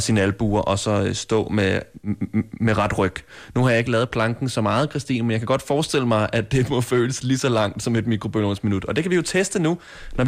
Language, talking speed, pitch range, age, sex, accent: Danish, 245 wpm, 115-150 Hz, 20-39, male, native